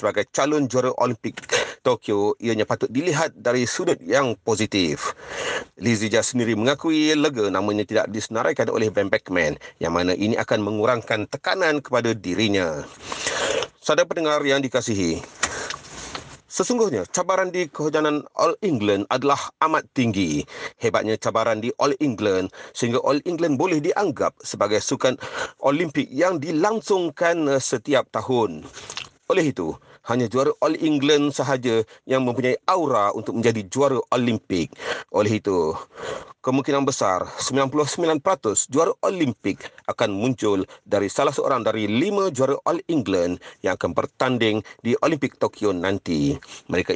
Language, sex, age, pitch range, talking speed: Malay, male, 40-59, 110-160 Hz, 130 wpm